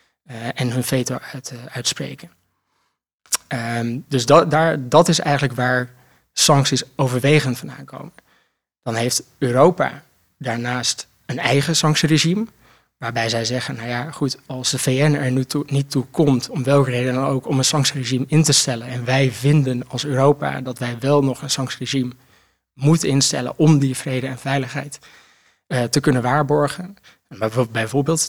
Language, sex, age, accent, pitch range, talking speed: Dutch, male, 20-39, Dutch, 125-145 Hz, 160 wpm